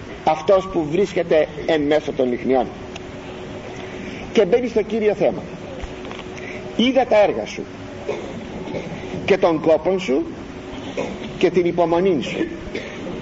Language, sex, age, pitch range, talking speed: Greek, male, 50-69, 155-230 Hz, 110 wpm